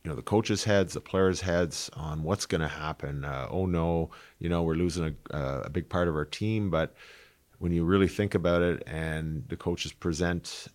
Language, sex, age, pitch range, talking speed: English, male, 40-59, 75-90 Hz, 220 wpm